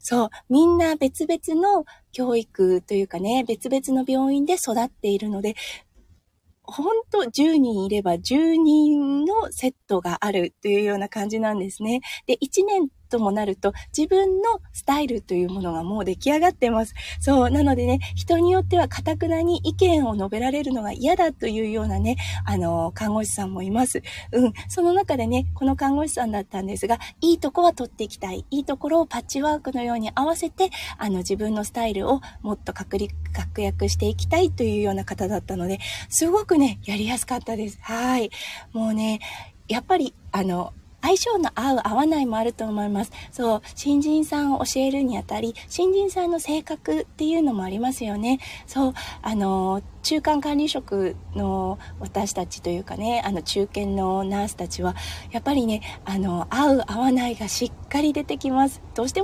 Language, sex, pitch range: Japanese, female, 195-285 Hz